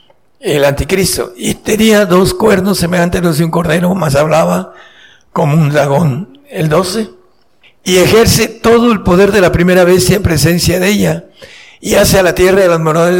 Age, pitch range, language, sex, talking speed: 60-79, 165-195 Hz, Spanish, male, 180 wpm